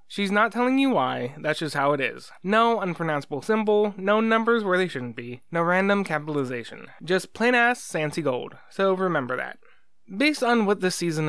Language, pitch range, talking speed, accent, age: English, 145-215 Hz, 185 wpm, American, 20-39